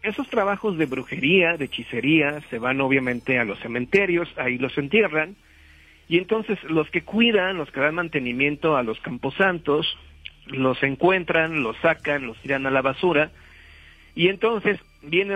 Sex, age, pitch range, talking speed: male, 50-69, 140-175 Hz, 150 wpm